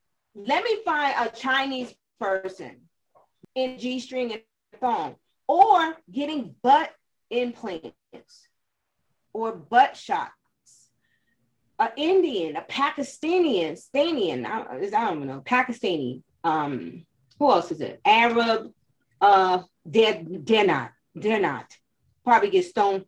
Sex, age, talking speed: female, 30-49, 110 wpm